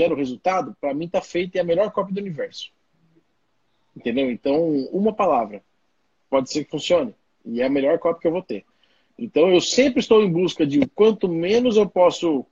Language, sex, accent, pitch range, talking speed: Portuguese, male, Brazilian, 160-215 Hz, 195 wpm